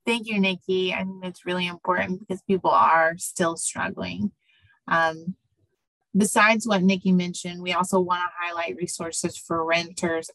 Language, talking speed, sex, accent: English, 145 wpm, female, American